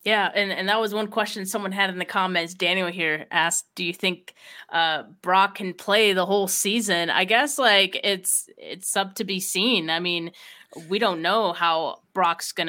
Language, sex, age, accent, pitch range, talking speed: English, female, 20-39, American, 170-205 Hz, 200 wpm